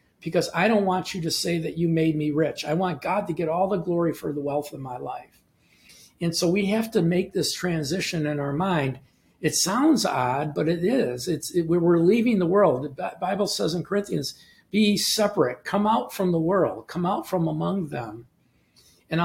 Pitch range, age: 155-190 Hz, 50-69